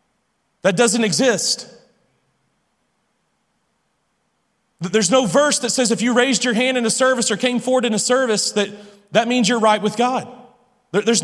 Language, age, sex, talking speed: English, 40-59, male, 160 wpm